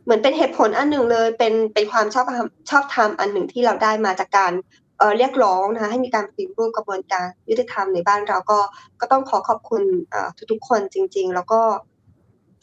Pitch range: 205-265 Hz